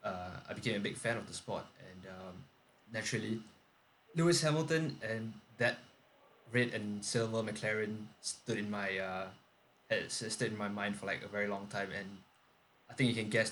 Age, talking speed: 20-39, 180 wpm